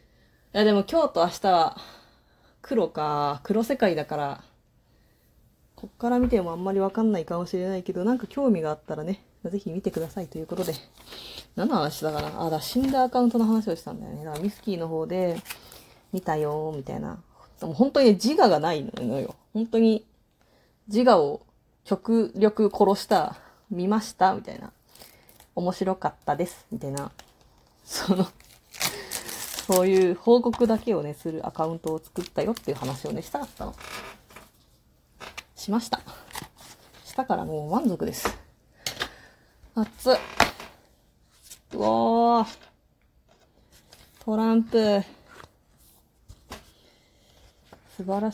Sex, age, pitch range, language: female, 20-39, 175-230 Hz, Japanese